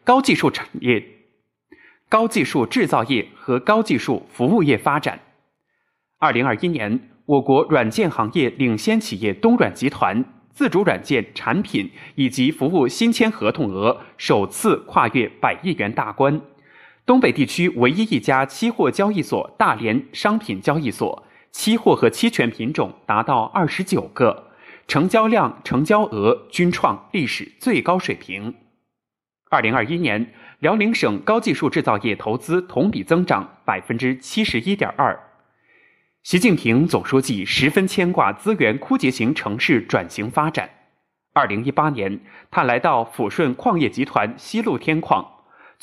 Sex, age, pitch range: male, 20-39, 140-235 Hz